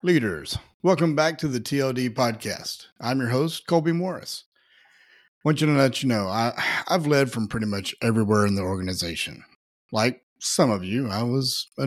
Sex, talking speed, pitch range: male, 180 wpm, 105-135 Hz